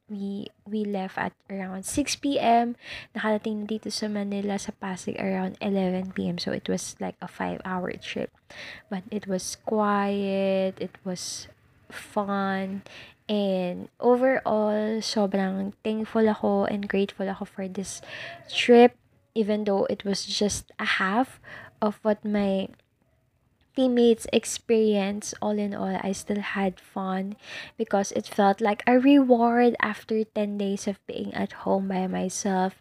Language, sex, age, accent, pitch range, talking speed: Filipino, female, 20-39, native, 195-220 Hz, 135 wpm